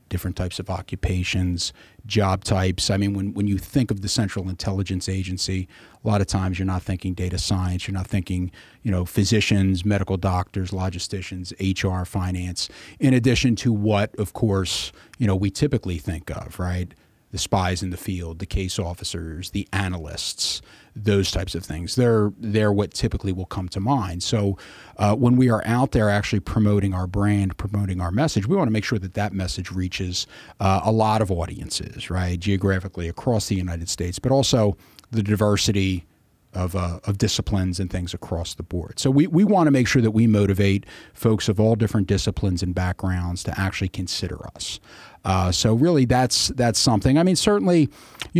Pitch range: 95-115 Hz